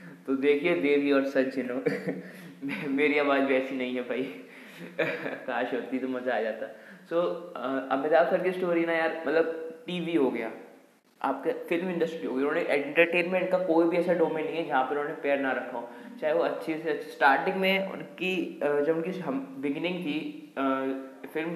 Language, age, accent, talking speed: Hindi, 20-39, native, 180 wpm